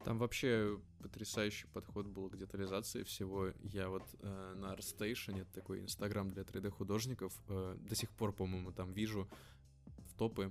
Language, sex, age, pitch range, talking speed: Russian, male, 20-39, 95-110 Hz, 155 wpm